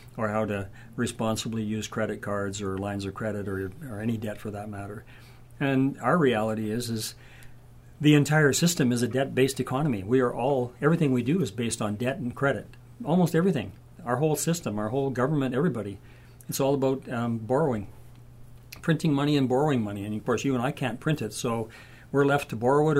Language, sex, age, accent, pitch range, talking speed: English, male, 50-69, American, 105-125 Hz, 200 wpm